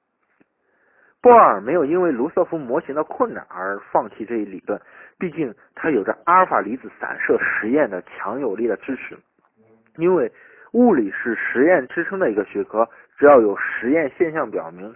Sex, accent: male, native